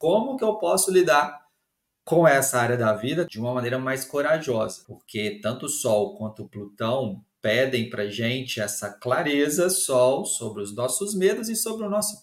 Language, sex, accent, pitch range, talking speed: Portuguese, male, Brazilian, 120-165 Hz, 180 wpm